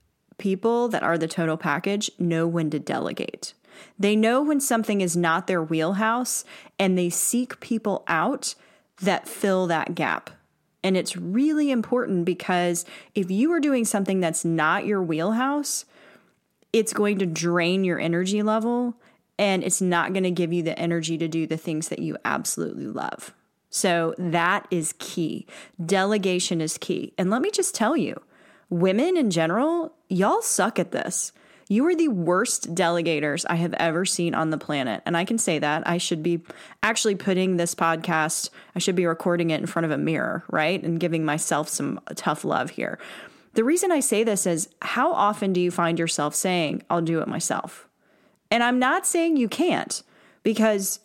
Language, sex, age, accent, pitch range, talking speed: English, female, 30-49, American, 170-220 Hz, 175 wpm